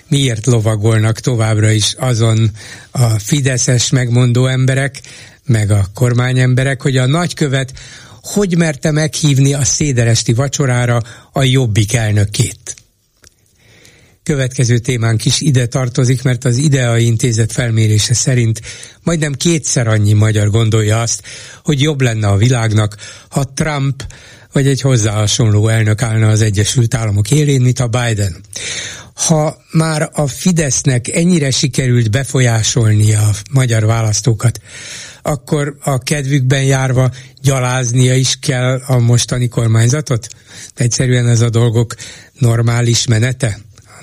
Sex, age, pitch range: male, 60-79, 110-135 Hz